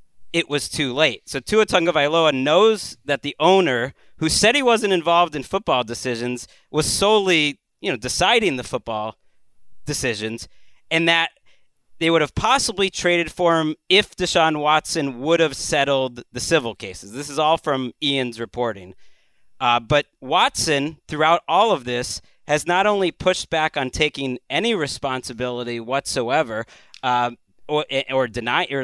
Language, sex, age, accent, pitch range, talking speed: English, male, 30-49, American, 135-175 Hz, 150 wpm